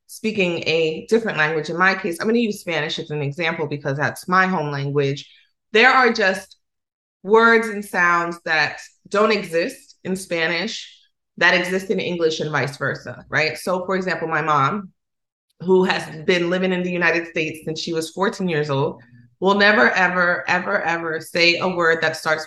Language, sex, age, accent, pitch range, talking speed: English, female, 30-49, American, 155-185 Hz, 180 wpm